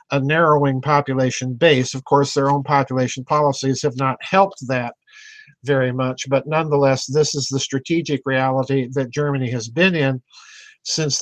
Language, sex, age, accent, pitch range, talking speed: English, male, 50-69, American, 135-165 Hz, 155 wpm